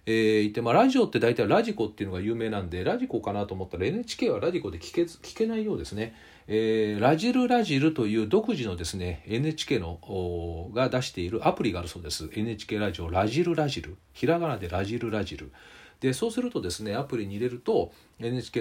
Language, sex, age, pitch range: Japanese, male, 40-59, 95-140 Hz